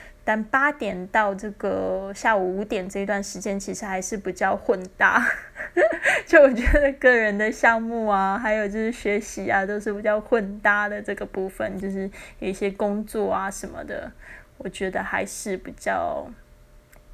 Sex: female